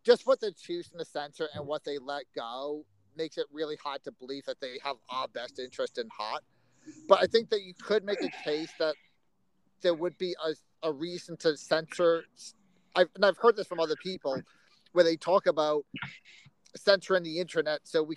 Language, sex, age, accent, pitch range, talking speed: English, male, 40-59, American, 155-200 Hz, 200 wpm